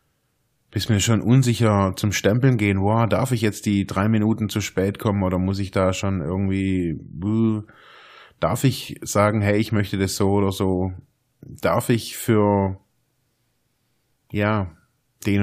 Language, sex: German, male